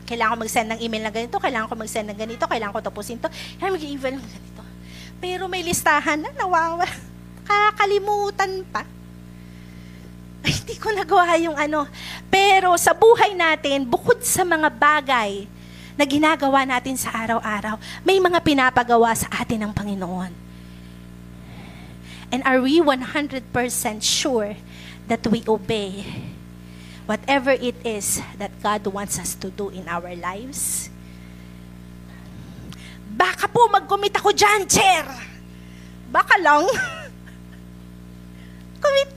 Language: Filipino